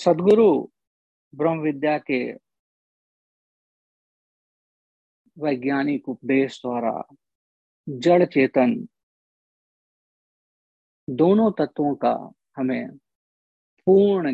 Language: Hindi